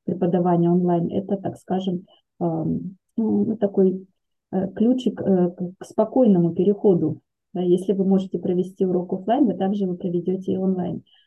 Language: Russian